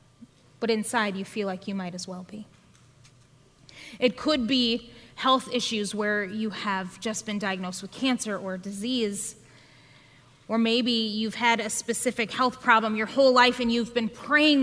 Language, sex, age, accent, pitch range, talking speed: English, female, 20-39, American, 190-260 Hz, 165 wpm